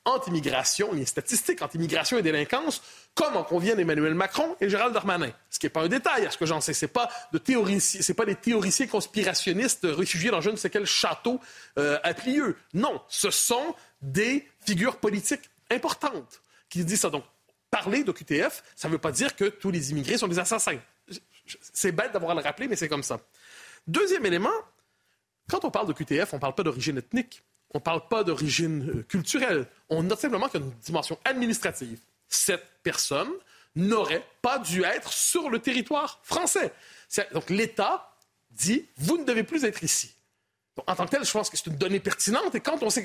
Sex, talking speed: male, 205 wpm